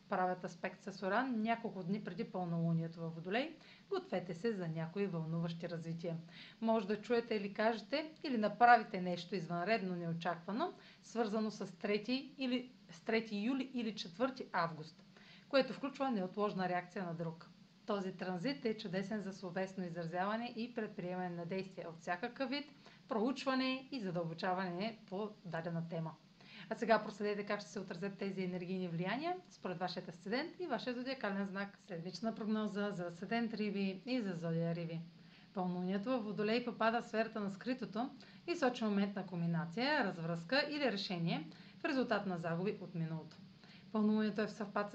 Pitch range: 185-225 Hz